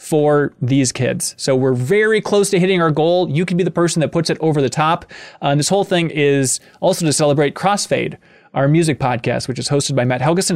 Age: 20-39